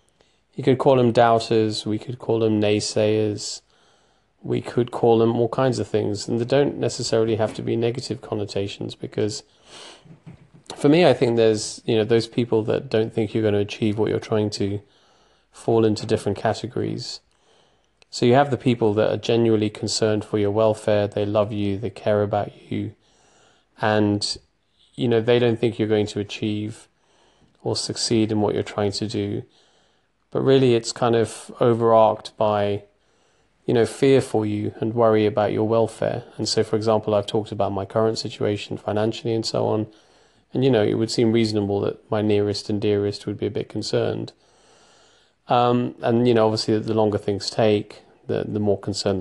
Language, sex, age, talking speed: English, male, 30-49, 185 wpm